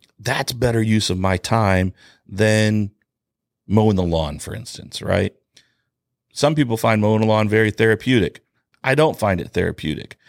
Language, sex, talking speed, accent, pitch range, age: English, male, 150 wpm, American, 95-135 Hz, 40-59